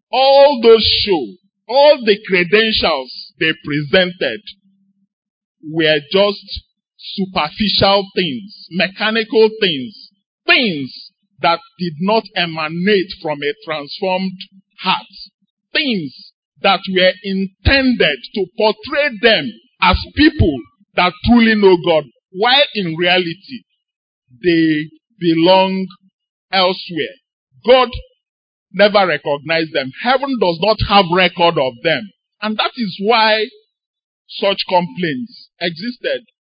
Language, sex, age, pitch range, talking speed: English, male, 50-69, 175-230 Hz, 100 wpm